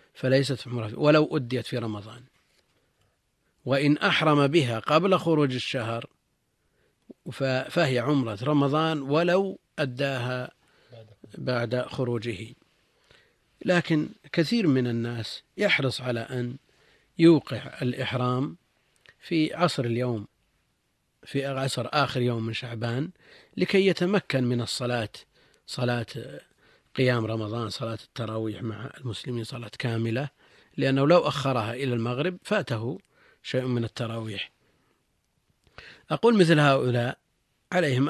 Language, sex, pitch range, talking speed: Arabic, male, 120-145 Hz, 100 wpm